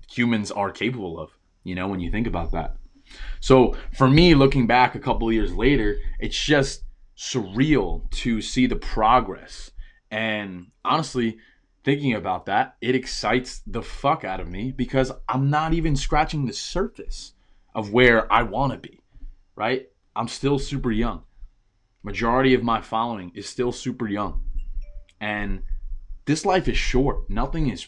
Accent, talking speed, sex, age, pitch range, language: American, 155 wpm, male, 20-39, 95-130 Hz, English